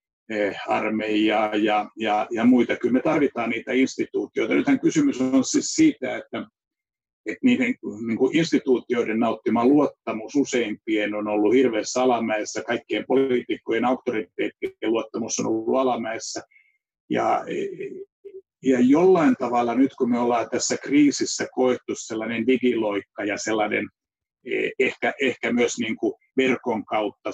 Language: Finnish